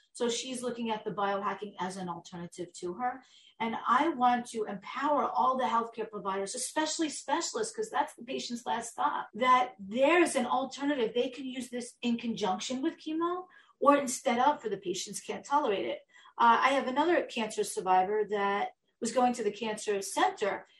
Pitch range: 210-285 Hz